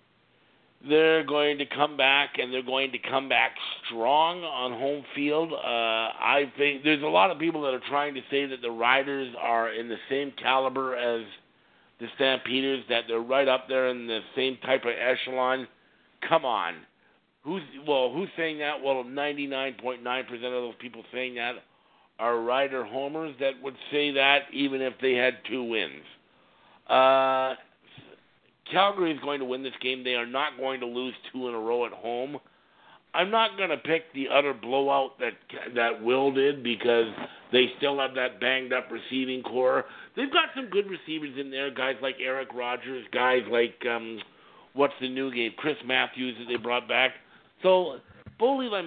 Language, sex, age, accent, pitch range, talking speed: English, male, 50-69, American, 125-140 Hz, 175 wpm